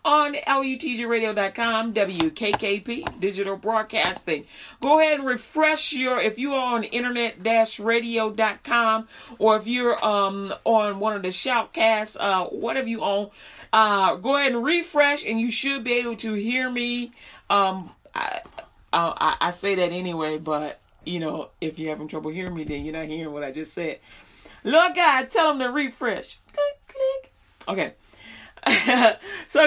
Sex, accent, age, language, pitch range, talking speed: female, American, 40-59, English, 205-290 Hz, 155 wpm